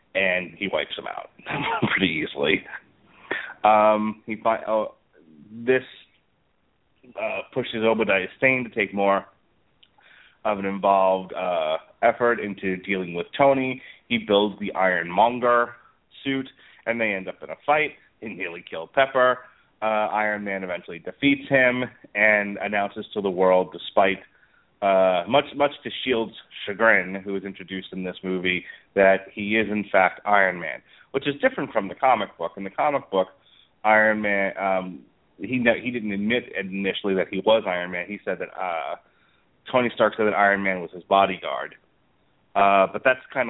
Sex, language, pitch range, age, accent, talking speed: male, English, 95-115 Hz, 30-49, American, 160 wpm